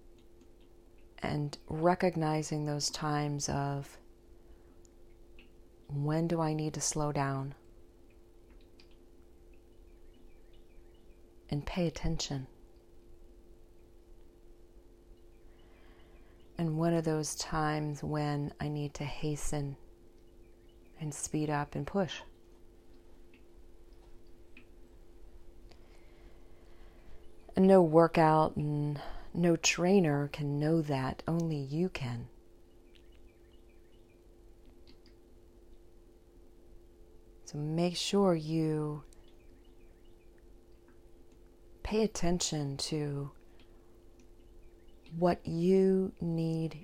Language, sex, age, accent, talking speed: English, female, 40-59, American, 65 wpm